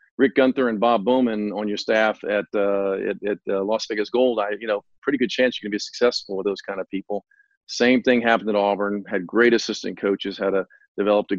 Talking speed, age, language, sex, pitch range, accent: 235 wpm, 40-59, English, male, 105-120 Hz, American